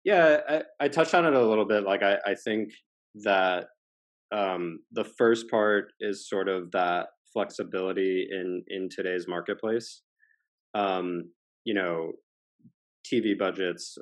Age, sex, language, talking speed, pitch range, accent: 20-39, male, English, 135 wpm, 85-105 Hz, American